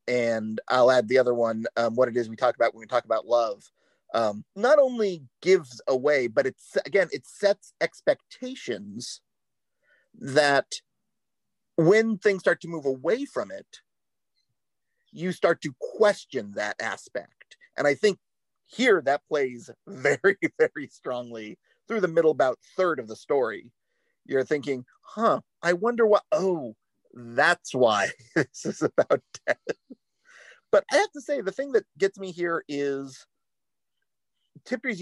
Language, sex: English, male